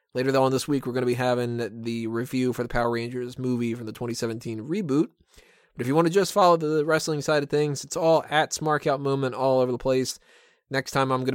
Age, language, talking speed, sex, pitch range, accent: 20-39, English, 245 wpm, male, 120-145 Hz, American